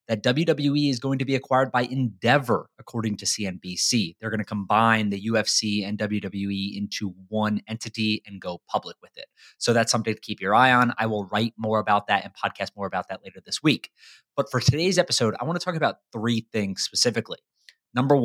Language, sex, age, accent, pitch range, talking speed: English, male, 30-49, American, 100-130 Hz, 205 wpm